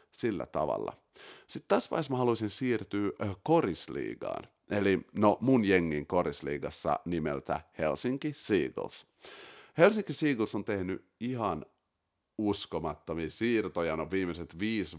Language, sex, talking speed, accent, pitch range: Finnish, male, 110 wpm, native, 85-115 Hz